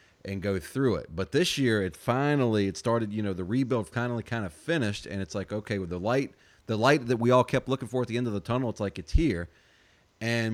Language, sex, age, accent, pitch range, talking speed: English, male, 30-49, American, 95-120 Hz, 270 wpm